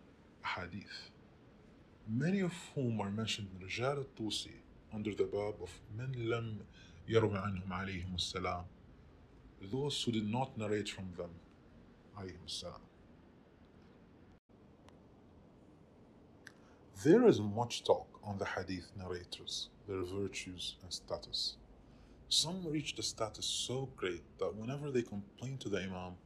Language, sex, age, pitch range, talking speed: English, male, 30-49, 90-120 Hz, 110 wpm